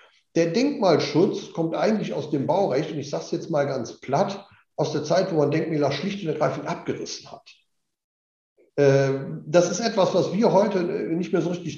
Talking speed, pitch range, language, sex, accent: 185 wpm, 155-215 Hz, German, male, German